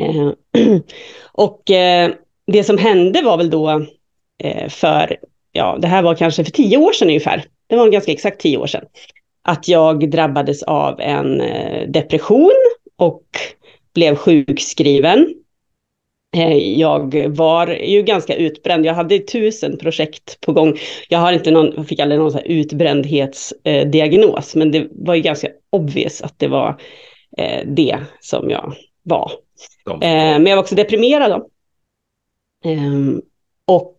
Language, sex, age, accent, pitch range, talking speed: Swedish, female, 30-49, native, 155-240 Hz, 140 wpm